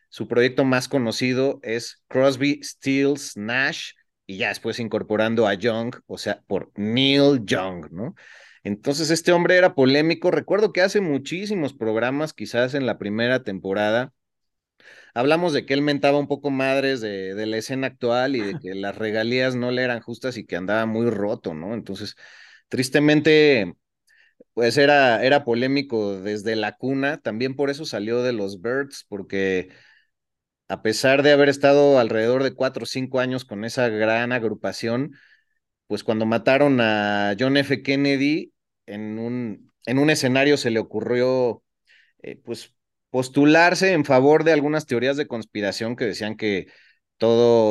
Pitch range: 110-140 Hz